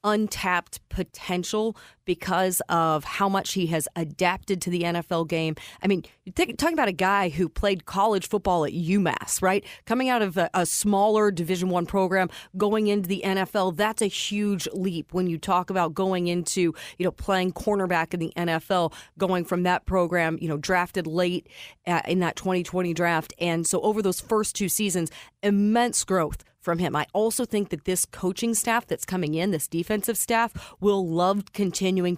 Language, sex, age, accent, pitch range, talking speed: English, female, 30-49, American, 170-200 Hz, 175 wpm